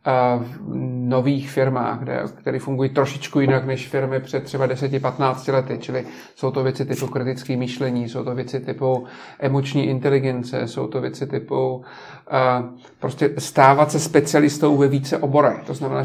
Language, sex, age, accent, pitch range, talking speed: Czech, male, 40-59, native, 135-150 Hz, 140 wpm